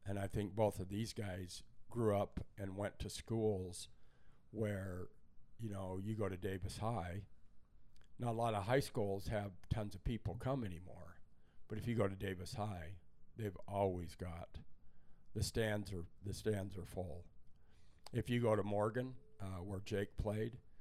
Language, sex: English, male